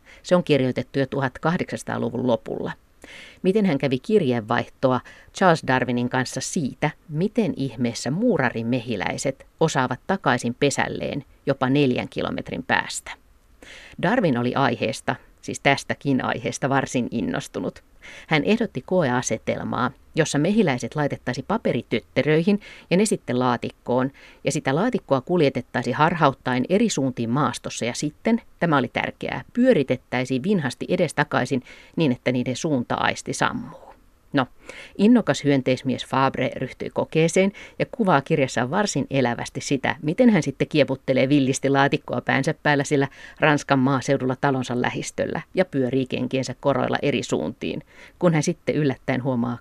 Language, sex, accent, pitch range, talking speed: Finnish, female, native, 125-155 Hz, 125 wpm